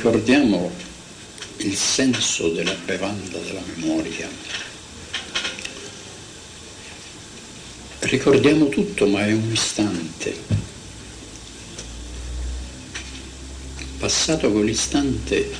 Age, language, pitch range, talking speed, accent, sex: 60-79, Italian, 80-110 Hz, 60 wpm, native, male